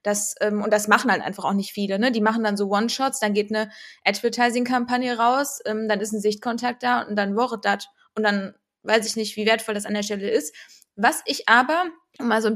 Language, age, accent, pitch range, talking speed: German, 20-39, German, 215-250 Hz, 230 wpm